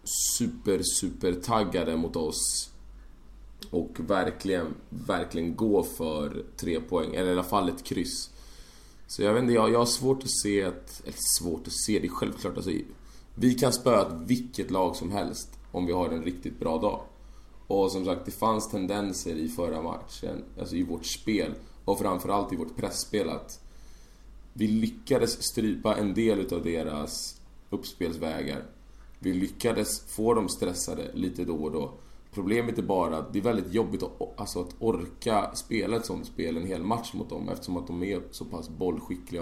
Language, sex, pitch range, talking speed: Swedish, male, 90-110 Hz, 175 wpm